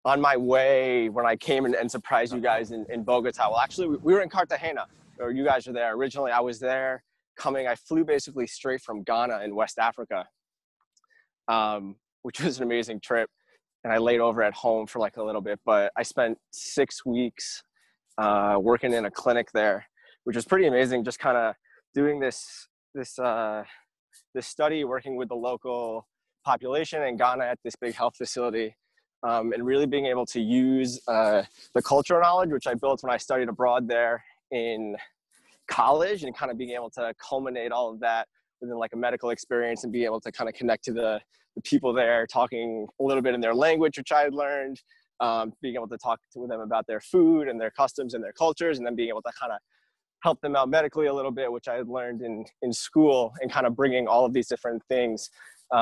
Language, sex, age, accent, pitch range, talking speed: English, male, 20-39, American, 115-135 Hz, 210 wpm